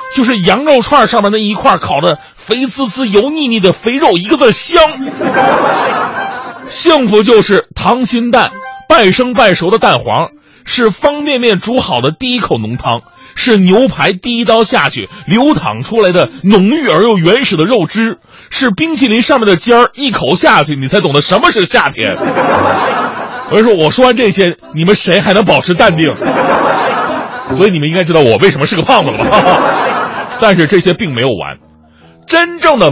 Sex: male